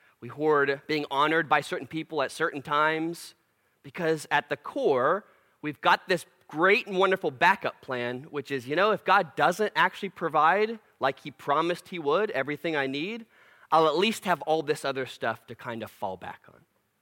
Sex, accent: male, American